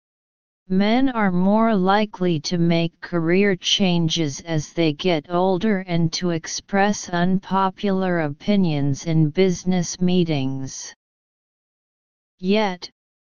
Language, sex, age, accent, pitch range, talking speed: English, female, 40-59, American, 160-195 Hz, 95 wpm